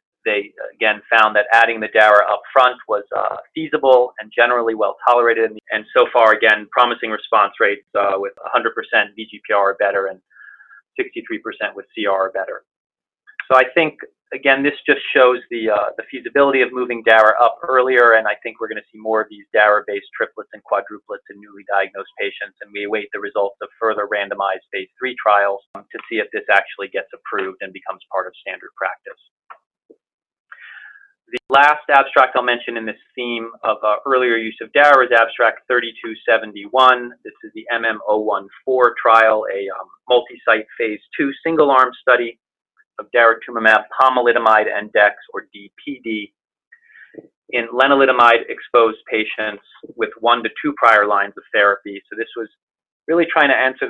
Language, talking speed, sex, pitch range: English, 160 wpm, male, 110-135 Hz